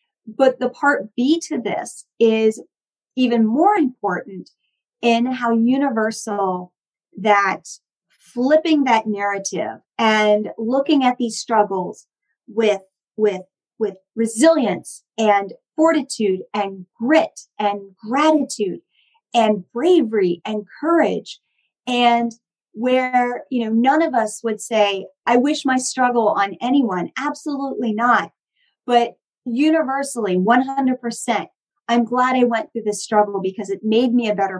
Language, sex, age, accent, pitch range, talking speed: English, female, 40-59, American, 205-255 Hz, 125 wpm